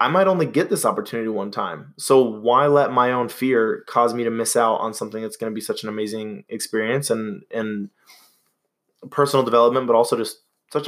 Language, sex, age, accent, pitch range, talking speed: English, male, 20-39, American, 110-135 Hz, 205 wpm